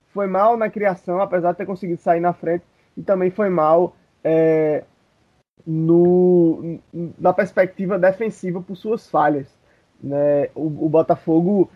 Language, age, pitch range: Portuguese, 20-39, 160-195 Hz